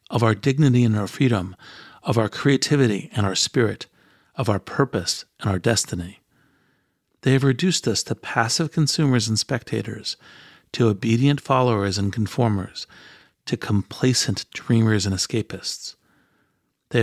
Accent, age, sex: American, 50-69, male